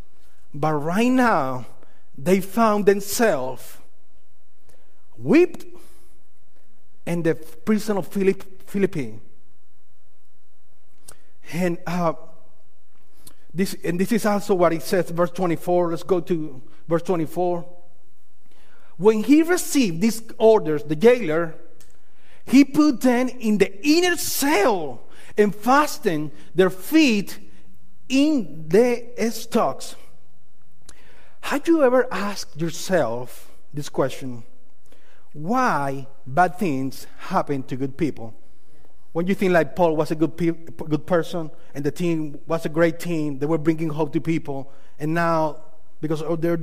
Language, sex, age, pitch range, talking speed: English, male, 50-69, 135-195 Hz, 115 wpm